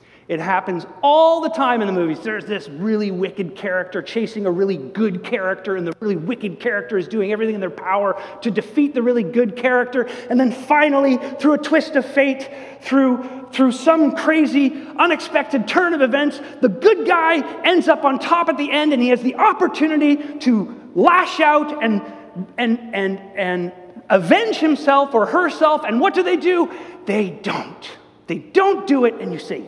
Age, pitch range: 30-49, 190-280 Hz